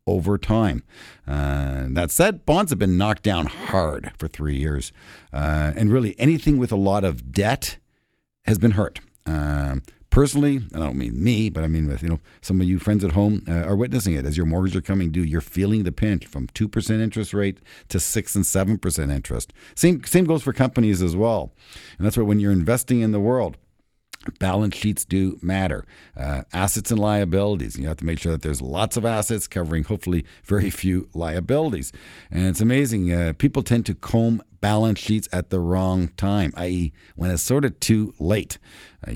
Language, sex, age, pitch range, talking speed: English, male, 50-69, 85-115 Hz, 200 wpm